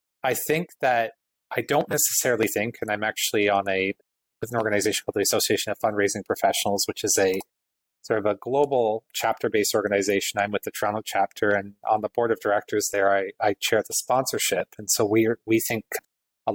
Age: 30-49